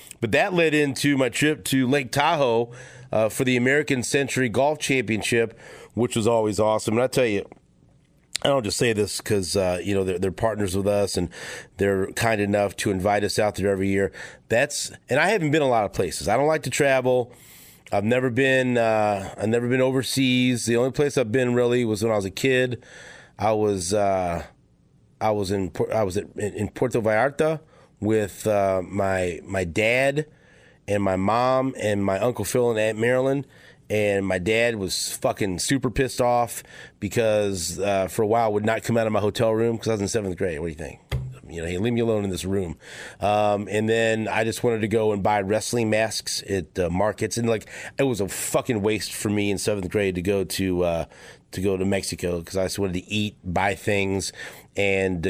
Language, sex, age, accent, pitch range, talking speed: English, male, 30-49, American, 95-120 Hz, 210 wpm